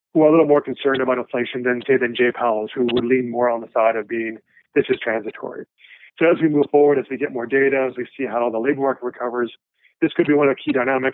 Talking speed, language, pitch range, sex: 275 wpm, English, 120-140 Hz, male